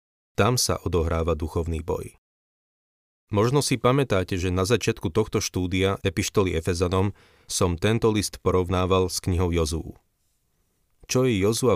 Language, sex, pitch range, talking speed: Slovak, male, 90-105 Hz, 130 wpm